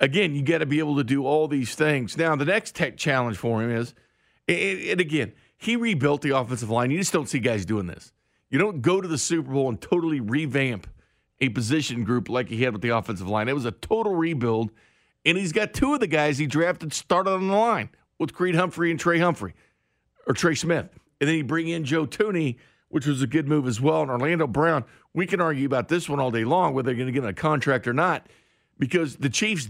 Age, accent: 50-69, American